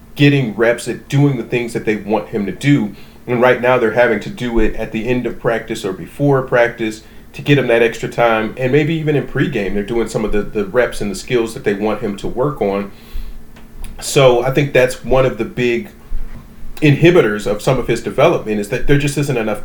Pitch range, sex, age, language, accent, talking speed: 110-140 Hz, male, 40-59, English, American, 230 wpm